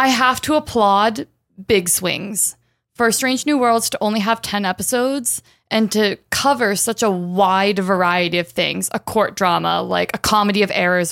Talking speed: 175 wpm